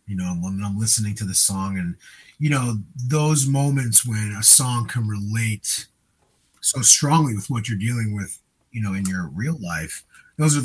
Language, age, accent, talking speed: English, 30-49, American, 185 wpm